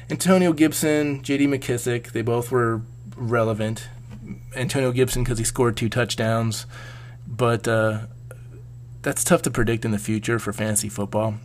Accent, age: American, 20-39